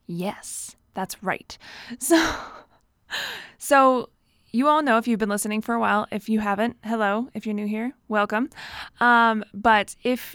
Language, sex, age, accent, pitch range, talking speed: English, female, 20-39, American, 200-245 Hz, 155 wpm